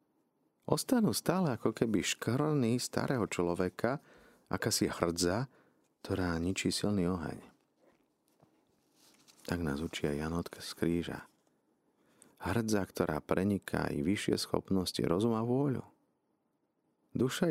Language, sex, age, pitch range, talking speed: Slovak, male, 40-59, 75-100 Hz, 105 wpm